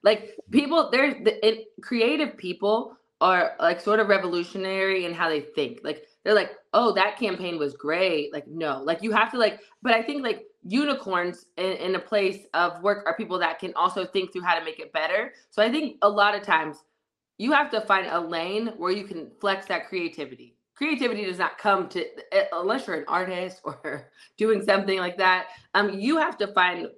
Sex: female